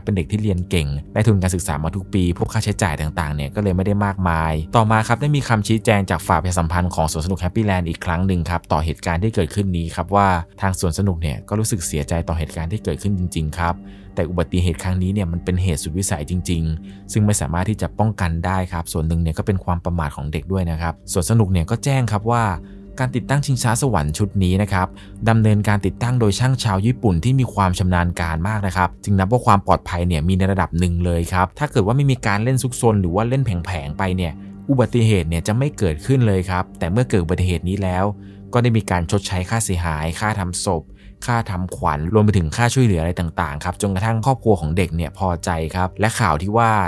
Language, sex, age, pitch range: Thai, male, 20-39, 85-110 Hz